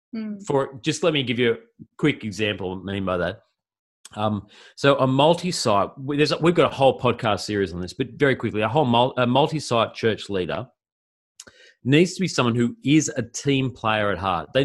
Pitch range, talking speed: 105-135 Hz, 185 wpm